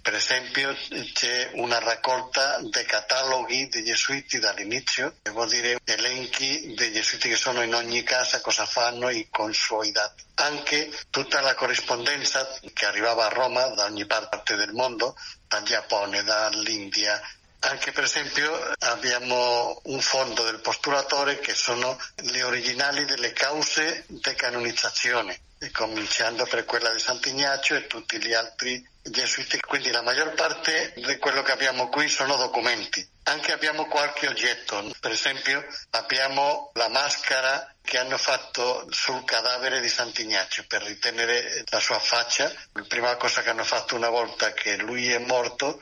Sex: male